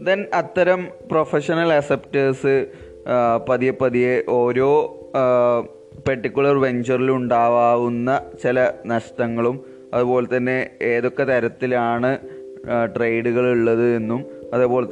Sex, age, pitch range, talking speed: male, 20-39, 120-155 Hz, 75 wpm